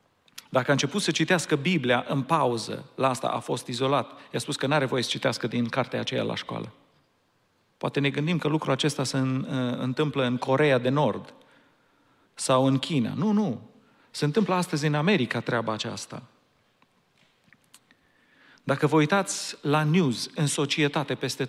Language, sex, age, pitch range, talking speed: Romanian, male, 40-59, 125-155 Hz, 160 wpm